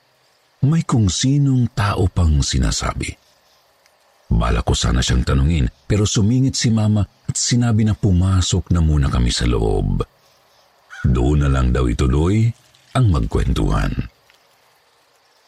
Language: Filipino